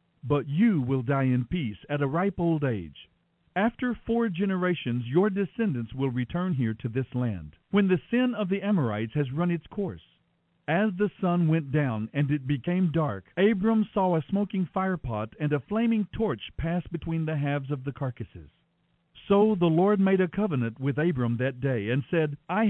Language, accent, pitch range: English, American, 135-205 Hz